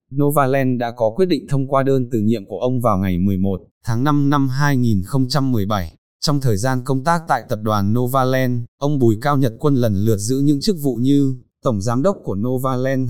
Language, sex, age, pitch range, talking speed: Vietnamese, male, 20-39, 115-145 Hz, 205 wpm